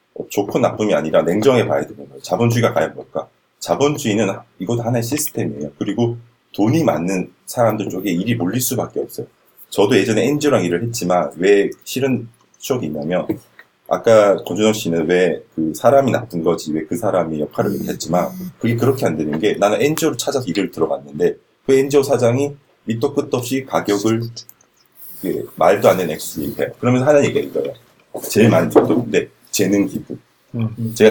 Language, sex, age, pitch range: Korean, male, 30-49, 90-135 Hz